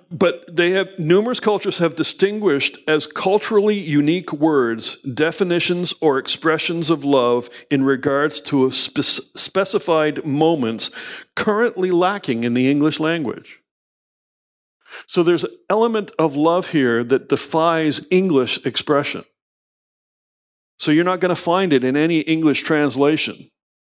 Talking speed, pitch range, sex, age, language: 130 wpm, 140-180 Hz, male, 50-69, English